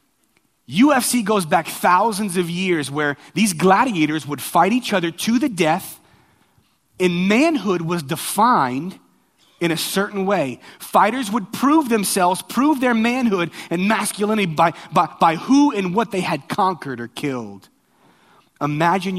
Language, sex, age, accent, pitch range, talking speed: English, male, 30-49, American, 130-185 Hz, 140 wpm